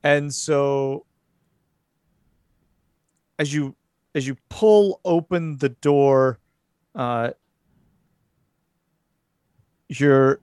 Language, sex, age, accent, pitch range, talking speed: English, male, 40-59, American, 125-160 Hz, 70 wpm